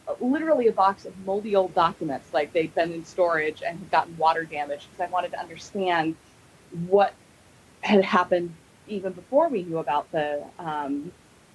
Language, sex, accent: English, female, American